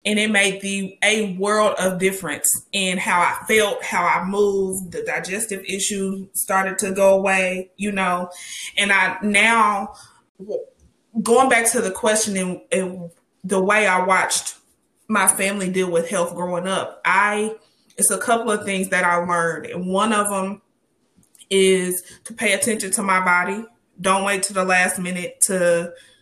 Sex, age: female, 20-39